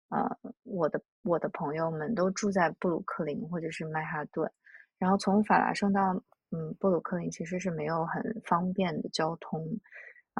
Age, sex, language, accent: 20-39, female, Chinese, native